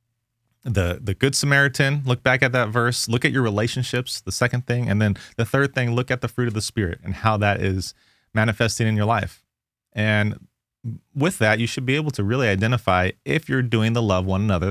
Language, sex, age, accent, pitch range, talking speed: English, male, 30-49, American, 100-130 Hz, 215 wpm